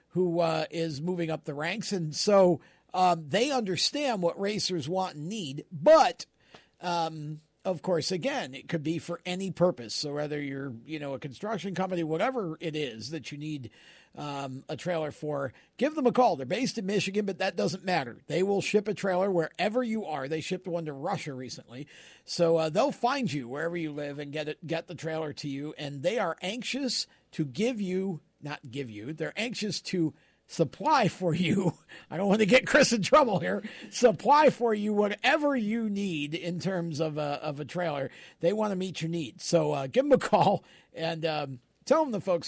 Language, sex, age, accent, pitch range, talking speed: English, male, 50-69, American, 150-190 Hz, 205 wpm